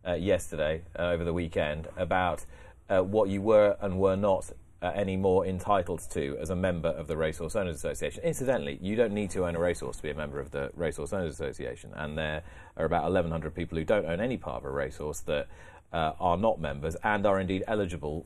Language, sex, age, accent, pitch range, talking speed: English, male, 30-49, British, 80-95 Hz, 215 wpm